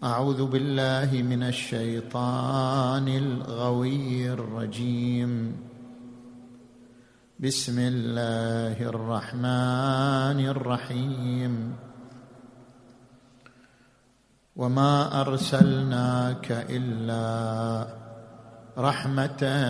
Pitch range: 120-135 Hz